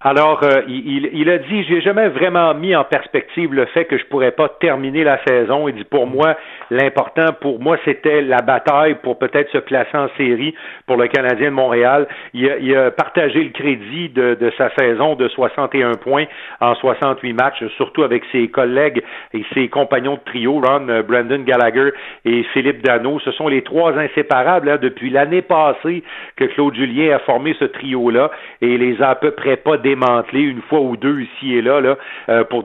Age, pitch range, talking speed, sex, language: 50-69, 125-160 Hz, 200 wpm, male, French